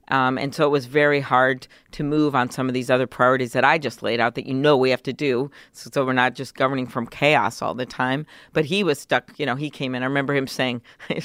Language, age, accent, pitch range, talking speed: English, 50-69, American, 130-145 Hz, 270 wpm